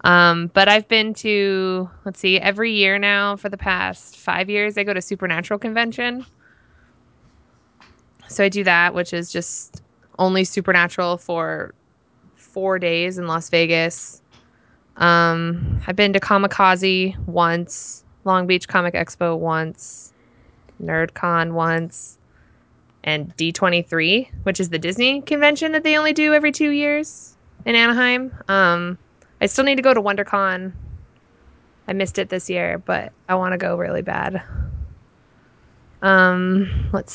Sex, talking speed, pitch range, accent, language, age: female, 140 wpm, 175-225 Hz, American, English, 20-39